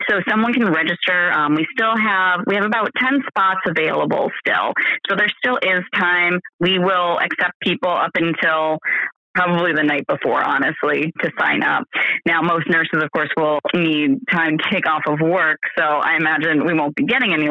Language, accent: English, American